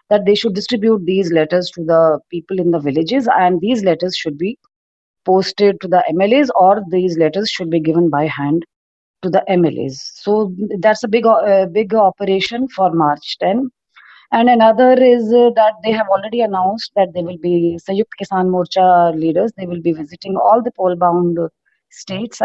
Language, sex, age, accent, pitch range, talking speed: English, female, 30-49, Indian, 175-215 Hz, 180 wpm